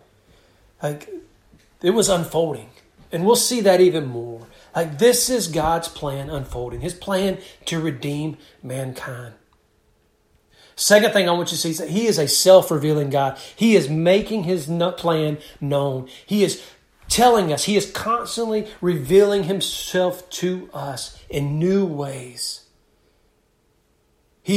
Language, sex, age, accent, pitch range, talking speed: English, male, 40-59, American, 140-195 Hz, 140 wpm